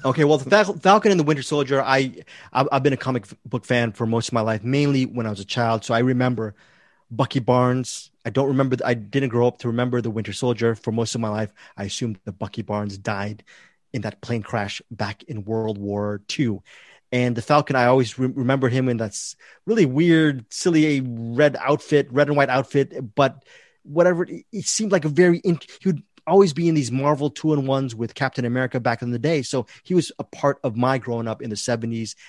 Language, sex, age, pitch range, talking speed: English, male, 20-39, 115-145 Hz, 215 wpm